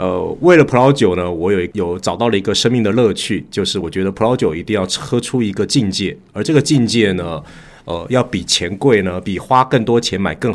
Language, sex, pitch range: Chinese, male, 90-120 Hz